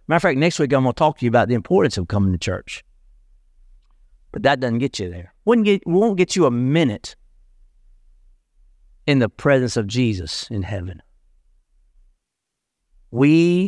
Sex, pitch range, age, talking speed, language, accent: male, 90-155 Hz, 50-69, 170 wpm, English, American